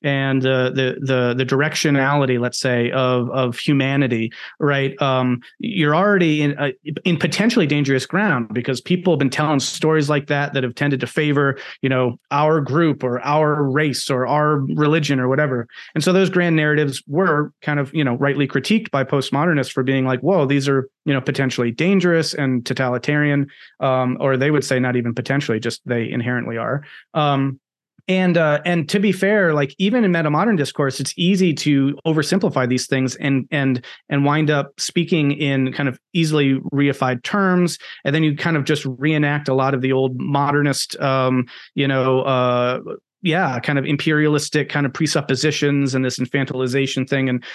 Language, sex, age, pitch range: English, male, 30-49, 130-155 Hz